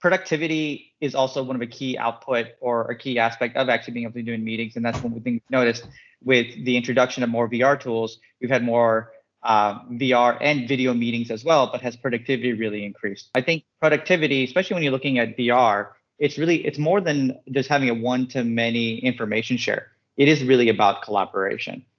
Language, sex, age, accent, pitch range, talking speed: English, male, 30-49, American, 115-135 Hz, 210 wpm